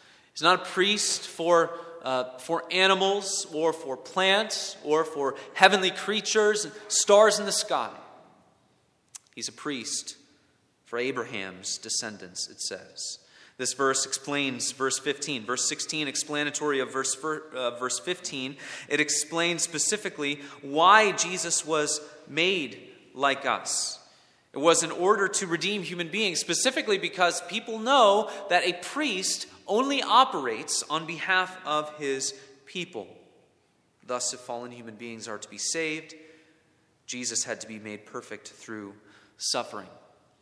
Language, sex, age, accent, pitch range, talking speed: English, male, 30-49, American, 135-190 Hz, 130 wpm